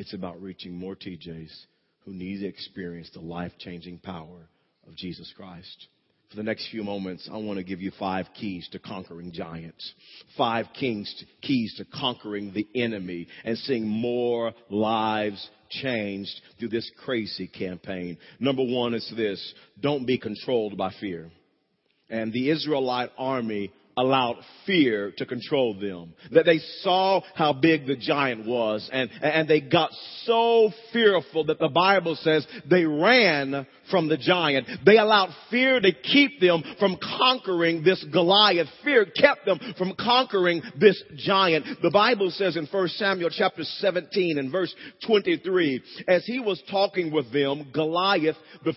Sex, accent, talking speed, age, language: male, American, 155 wpm, 40-59, English